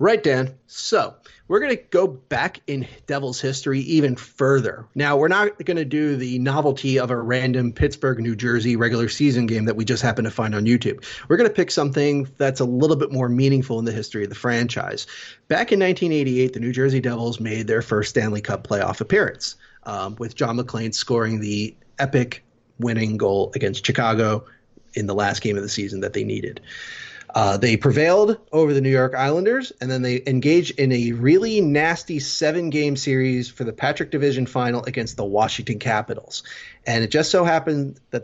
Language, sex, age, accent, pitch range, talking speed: English, male, 30-49, American, 115-145 Hz, 195 wpm